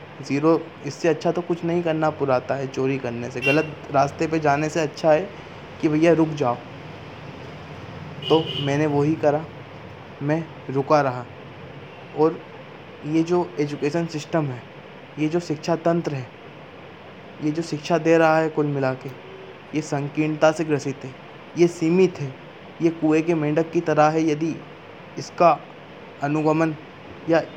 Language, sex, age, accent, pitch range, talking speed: Hindi, male, 20-39, native, 140-165 Hz, 150 wpm